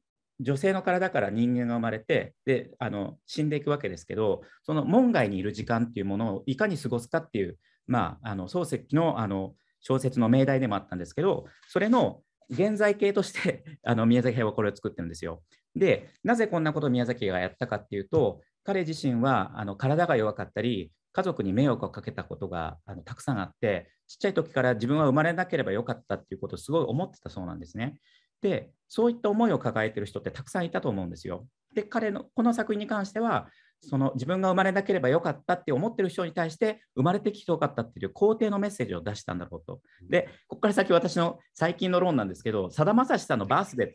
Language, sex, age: Japanese, male, 40-59